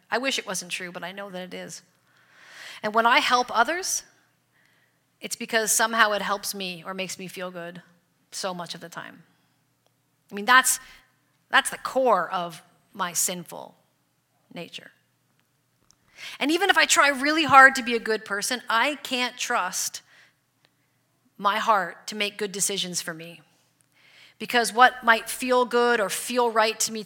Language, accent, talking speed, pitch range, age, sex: English, American, 165 wpm, 180-230 Hz, 40-59, female